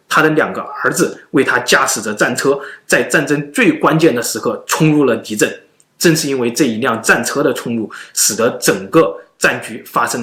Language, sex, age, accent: Chinese, male, 20-39, native